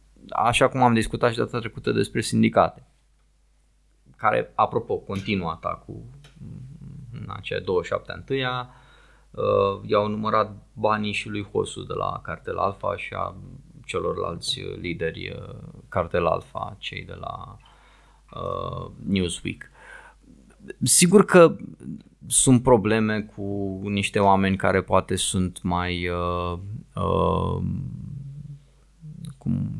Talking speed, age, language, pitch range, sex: 105 wpm, 20-39, Romanian, 90-125 Hz, male